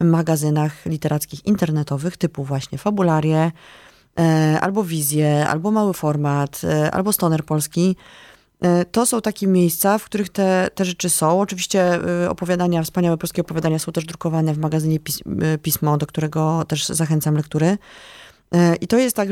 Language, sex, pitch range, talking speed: Polish, female, 160-195 Hz, 135 wpm